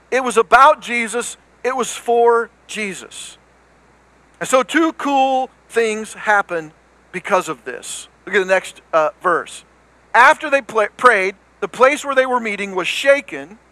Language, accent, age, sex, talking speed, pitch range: English, American, 50-69, male, 150 wpm, 190-255 Hz